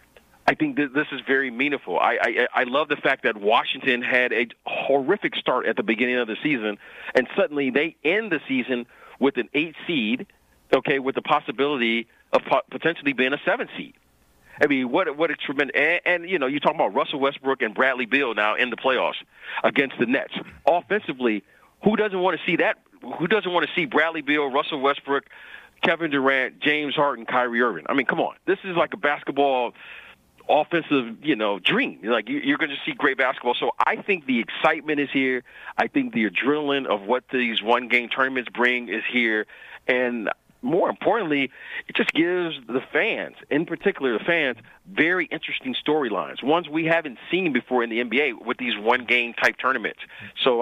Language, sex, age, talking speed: English, male, 40-59, 190 wpm